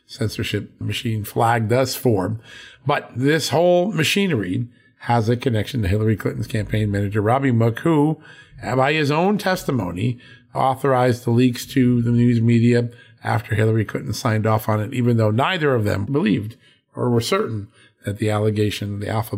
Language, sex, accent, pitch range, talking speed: English, male, American, 105-130 Hz, 160 wpm